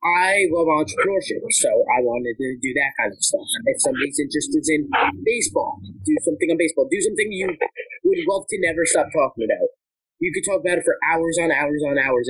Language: English